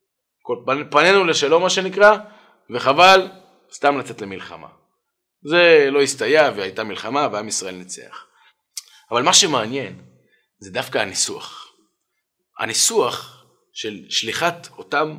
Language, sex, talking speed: Hebrew, male, 105 wpm